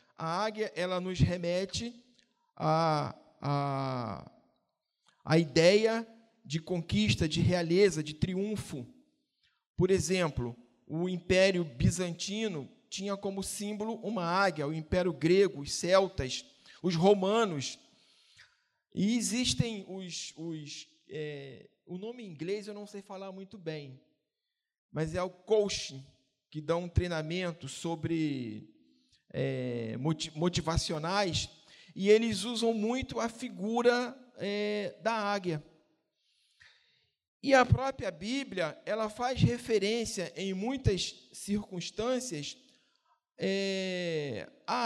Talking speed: 105 wpm